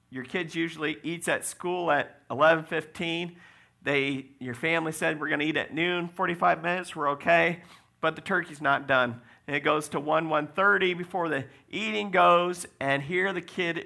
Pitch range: 125-165 Hz